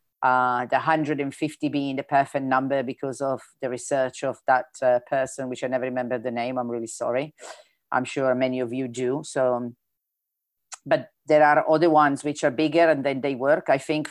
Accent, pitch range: Italian, 130-150 Hz